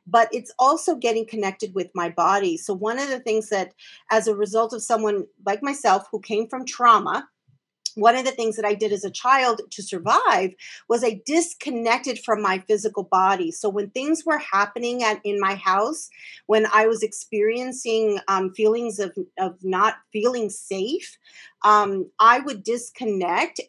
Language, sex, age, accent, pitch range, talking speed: English, female, 40-59, American, 200-255 Hz, 170 wpm